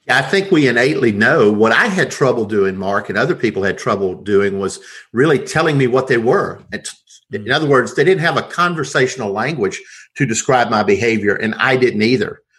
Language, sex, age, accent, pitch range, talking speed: English, male, 50-69, American, 105-125 Hz, 195 wpm